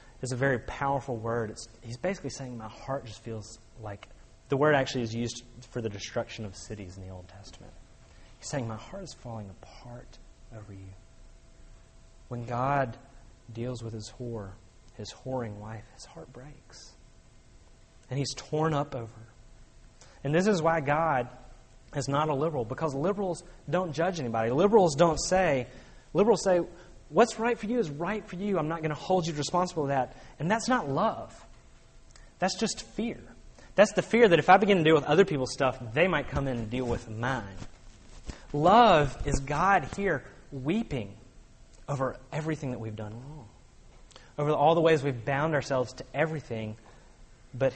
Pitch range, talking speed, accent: 115-155 Hz, 175 wpm, American